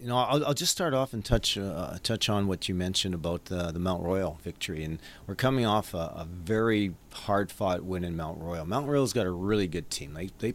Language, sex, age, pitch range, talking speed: English, male, 40-59, 95-115 Hz, 240 wpm